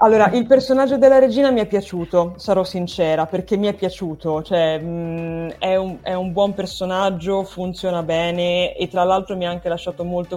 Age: 20-39